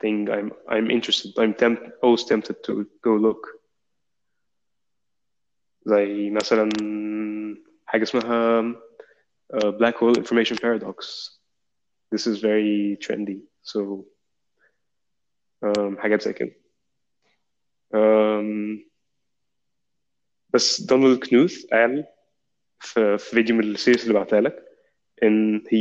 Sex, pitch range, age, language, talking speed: male, 105-115 Hz, 20-39, Arabic, 70 wpm